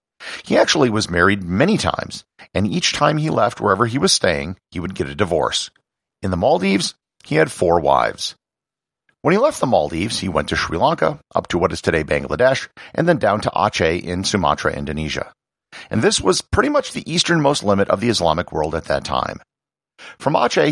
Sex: male